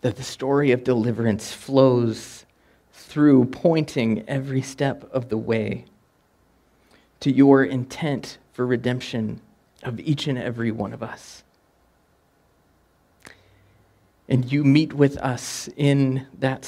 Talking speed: 115 wpm